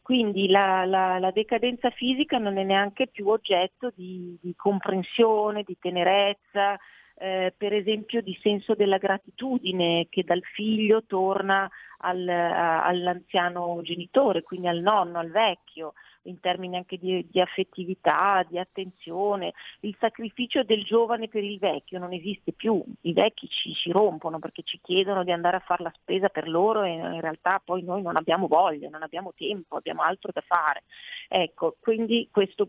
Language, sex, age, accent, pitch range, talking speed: Italian, female, 40-59, native, 180-215 Hz, 160 wpm